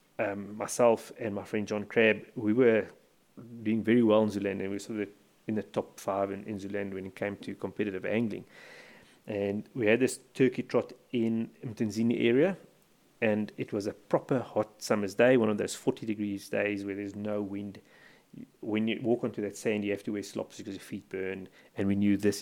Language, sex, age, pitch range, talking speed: English, male, 30-49, 100-120 Hz, 210 wpm